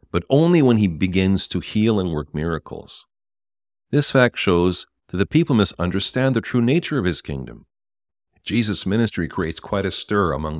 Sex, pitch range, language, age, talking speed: male, 75-100 Hz, English, 50-69, 170 wpm